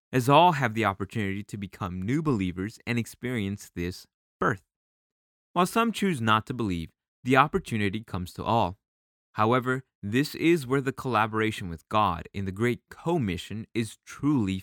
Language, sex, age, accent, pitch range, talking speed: English, male, 20-39, American, 95-125 Hz, 155 wpm